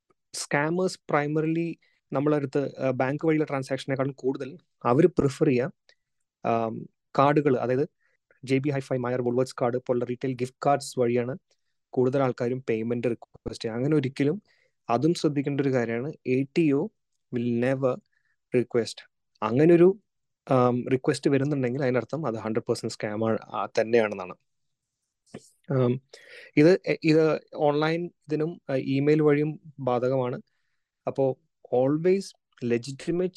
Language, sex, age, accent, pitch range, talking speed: Malayalam, male, 20-39, native, 120-145 Hz, 105 wpm